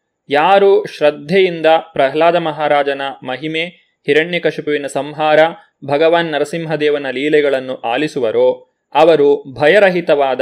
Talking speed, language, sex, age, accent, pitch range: 80 wpm, Kannada, male, 20-39, native, 150-190 Hz